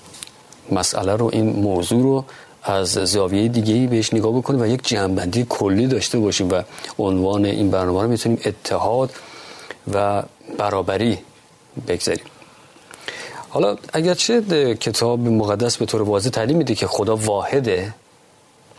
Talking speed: 130 wpm